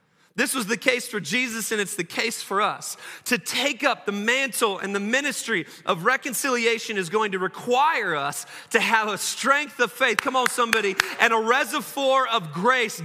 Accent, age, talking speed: American, 30-49, 190 wpm